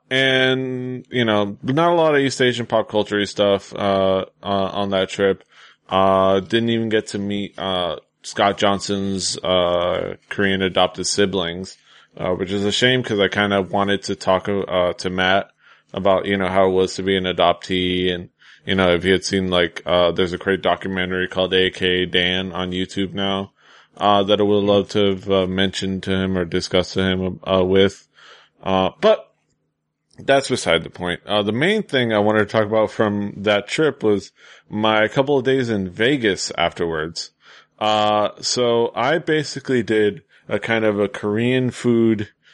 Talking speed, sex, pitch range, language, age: 180 wpm, male, 95-110 Hz, English, 20-39